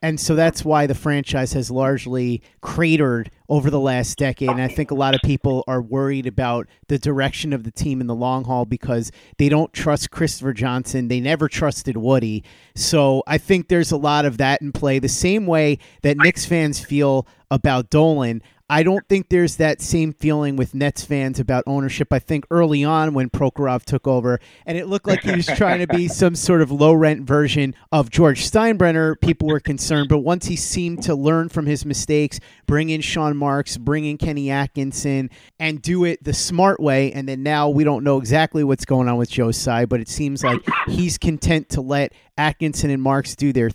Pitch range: 130-155 Hz